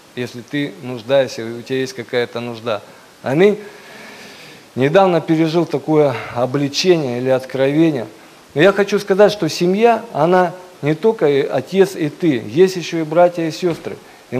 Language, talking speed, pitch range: Russian, 145 wpm, 135-175 Hz